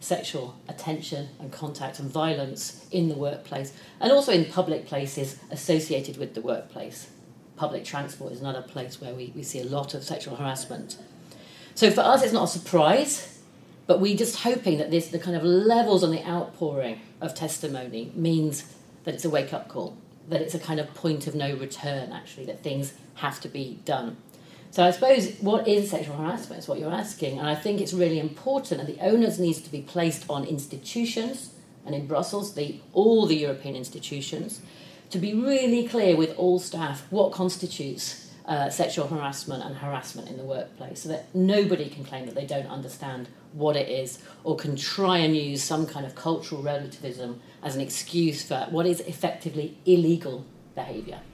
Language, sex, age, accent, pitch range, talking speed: English, female, 40-59, British, 140-180 Hz, 185 wpm